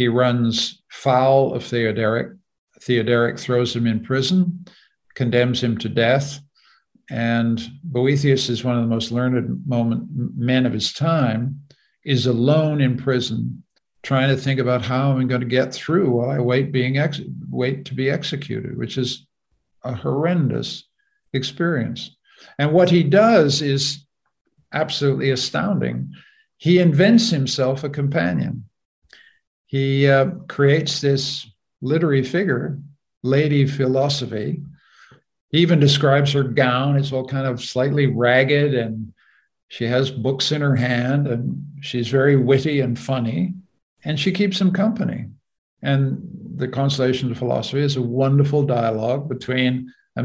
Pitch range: 125-150 Hz